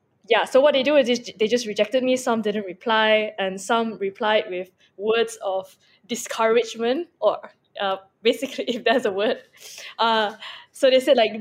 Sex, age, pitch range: female, 10-29, 195-245 Hz